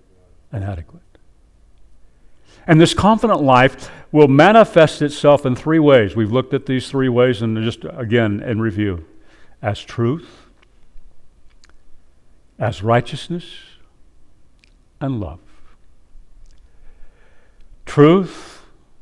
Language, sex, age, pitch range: English, male, 60-79, 90-130 Hz